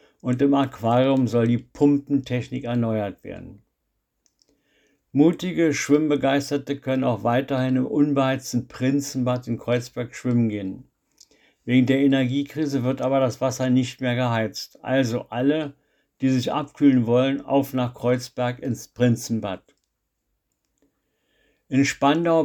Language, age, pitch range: German, 60-79, 125-140 Hz